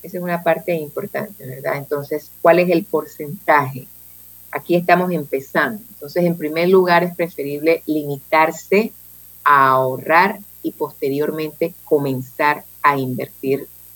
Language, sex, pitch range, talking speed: Spanish, female, 135-175 Hz, 120 wpm